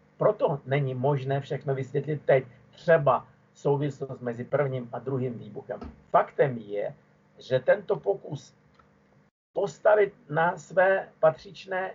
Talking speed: 110 wpm